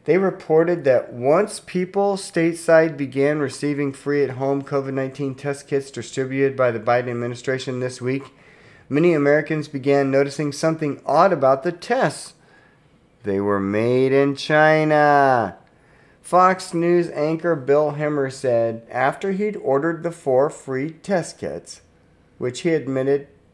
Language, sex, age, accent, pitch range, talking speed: English, male, 40-59, American, 115-160 Hz, 135 wpm